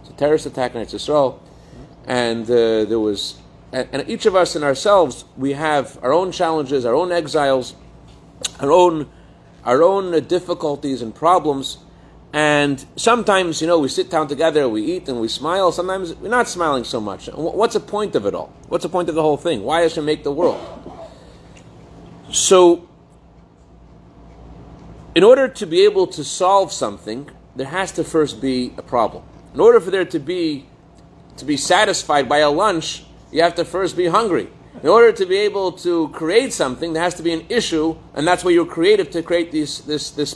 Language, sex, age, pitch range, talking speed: English, male, 40-59, 145-190 Hz, 185 wpm